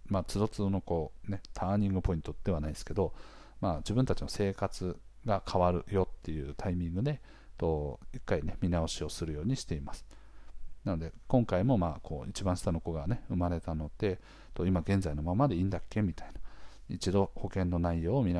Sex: male